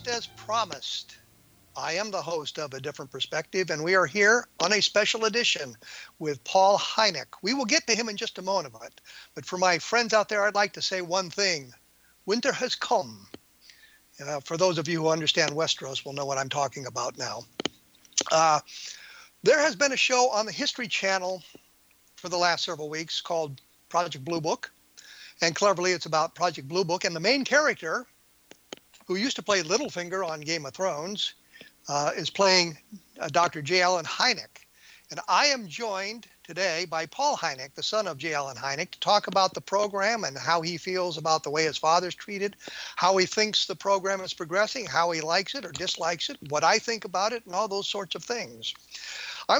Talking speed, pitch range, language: 200 wpm, 160-205 Hz, English